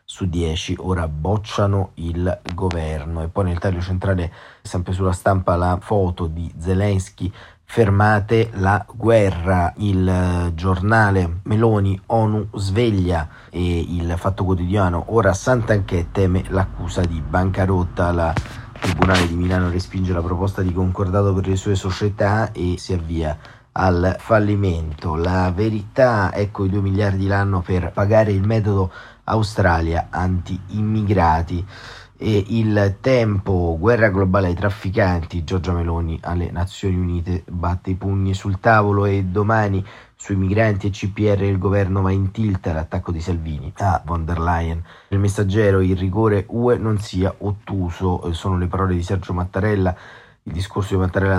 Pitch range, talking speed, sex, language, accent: 90-100 Hz, 140 wpm, male, Italian, native